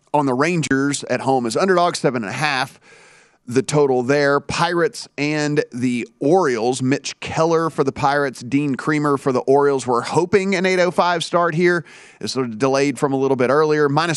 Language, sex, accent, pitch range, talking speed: English, male, American, 130-155 Hz, 175 wpm